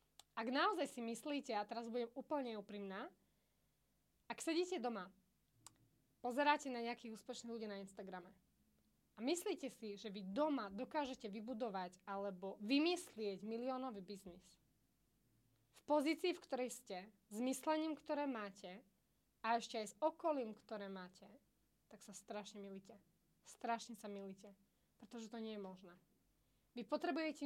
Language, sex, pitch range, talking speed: Slovak, female, 205-260 Hz, 135 wpm